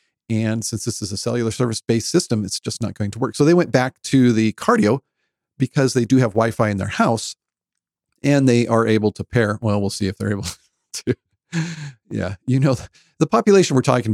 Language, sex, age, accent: English, male, 40-59, American